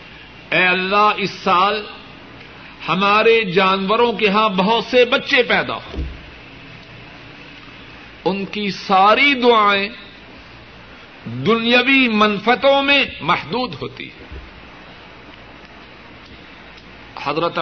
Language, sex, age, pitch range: Urdu, male, 60-79, 170-235 Hz